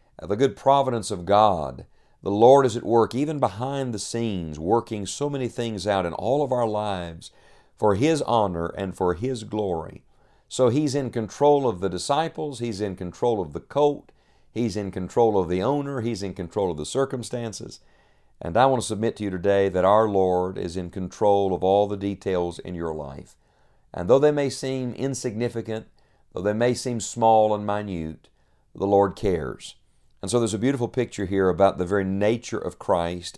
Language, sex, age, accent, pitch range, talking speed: English, male, 50-69, American, 95-125 Hz, 190 wpm